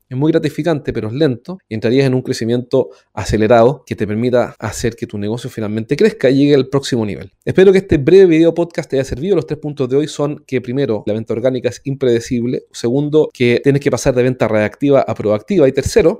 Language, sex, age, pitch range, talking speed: Spanish, male, 30-49, 115-150 Hz, 220 wpm